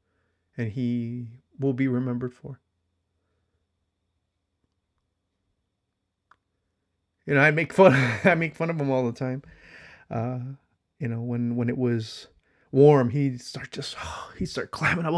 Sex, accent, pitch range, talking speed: male, American, 120-165 Hz, 140 wpm